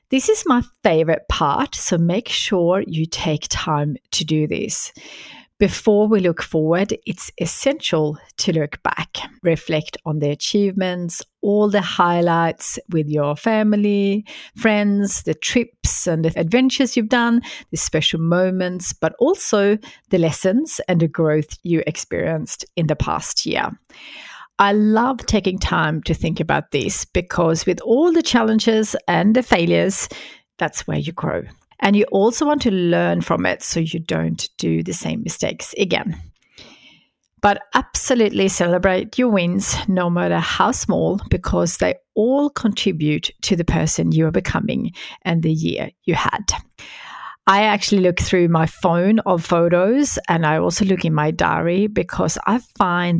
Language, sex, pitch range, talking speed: English, female, 160-220 Hz, 150 wpm